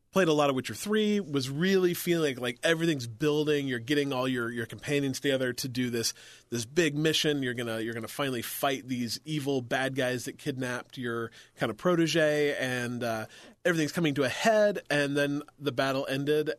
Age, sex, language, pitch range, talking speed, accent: 30-49, male, English, 115-145 Hz, 195 wpm, American